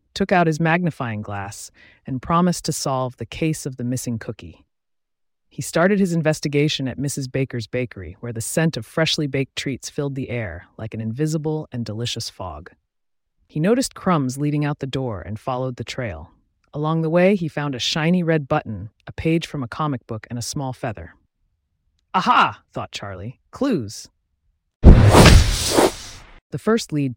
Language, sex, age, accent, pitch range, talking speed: English, female, 30-49, American, 105-155 Hz, 170 wpm